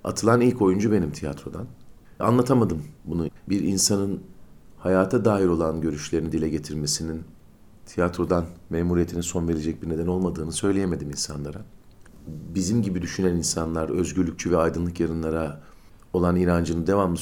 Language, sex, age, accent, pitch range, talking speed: Turkish, male, 50-69, native, 85-100 Hz, 120 wpm